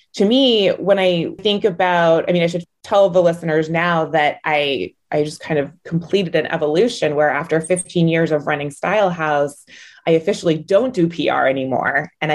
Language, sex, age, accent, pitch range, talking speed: English, female, 20-39, American, 150-185 Hz, 185 wpm